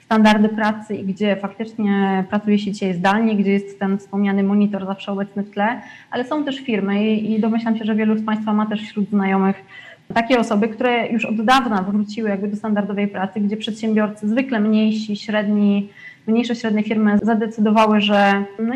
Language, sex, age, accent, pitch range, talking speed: Polish, female, 20-39, native, 200-225 Hz, 180 wpm